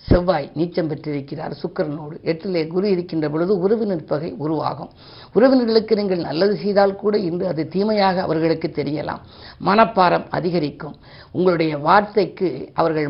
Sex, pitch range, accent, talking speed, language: female, 160-200 Hz, native, 120 wpm, Tamil